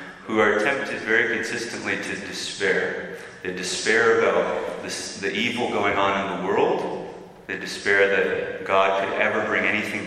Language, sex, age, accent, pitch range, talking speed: English, male, 30-49, American, 95-120 Hz, 155 wpm